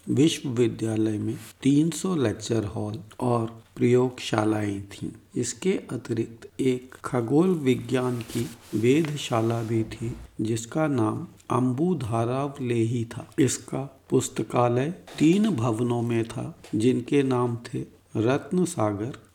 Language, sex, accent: Hindi, male, native